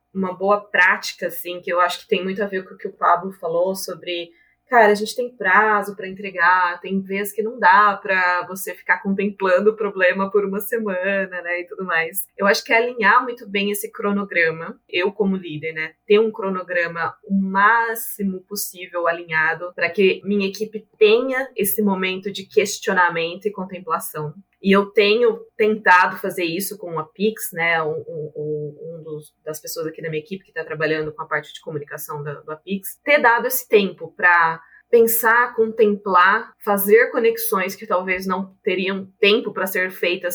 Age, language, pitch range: 20-39, Portuguese, 175-210 Hz